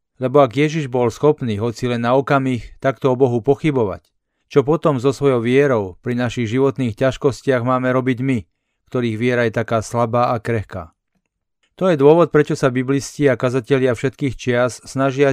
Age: 40-59